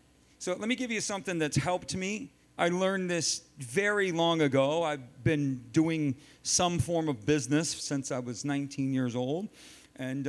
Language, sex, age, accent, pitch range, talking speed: English, male, 40-59, American, 115-160 Hz, 170 wpm